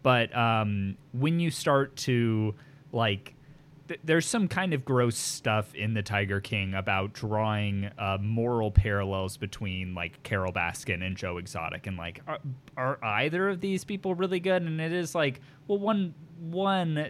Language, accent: English, American